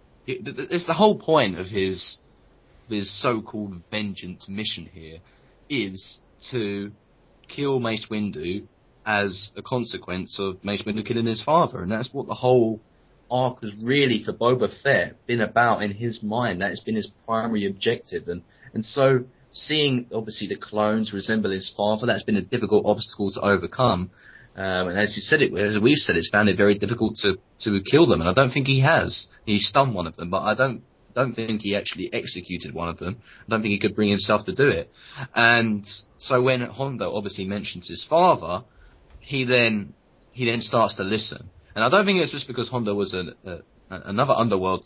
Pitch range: 100-125 Hz